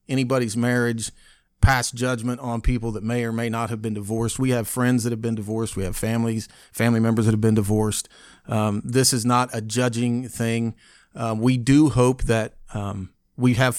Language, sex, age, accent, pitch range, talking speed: English, male, 40-59, American, 110-125 Hz, 195 wpm